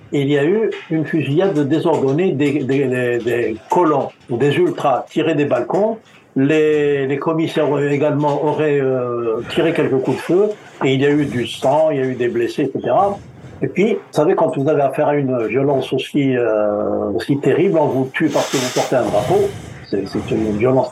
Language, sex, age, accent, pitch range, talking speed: French, male, 70-89, French, 130-160 Hz, 195 wpm